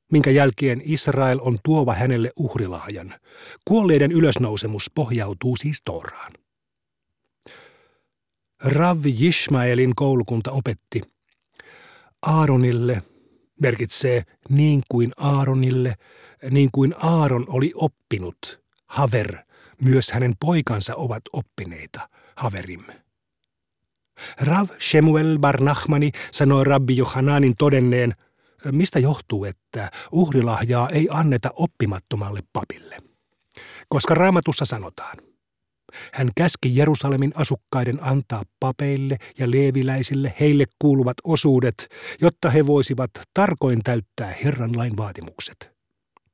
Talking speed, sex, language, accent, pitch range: 90 wpm, male, Finnish, native, 120-145 Hz